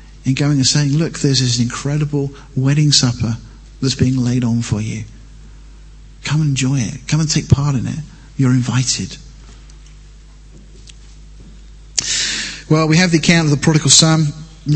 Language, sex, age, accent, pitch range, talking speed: English, male, 40-59, British, 135-175 Hz, 165 wpm